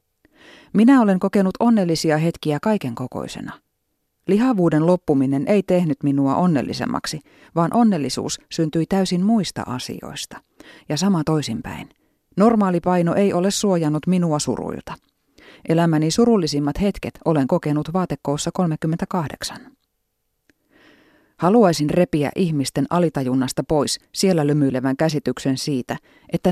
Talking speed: 105 wpm